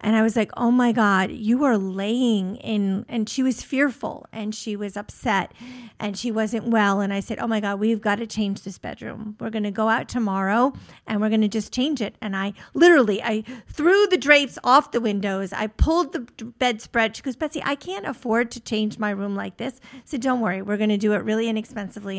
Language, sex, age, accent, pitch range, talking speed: English, female, 50-69, American, 210-245 Hz, 225 wpm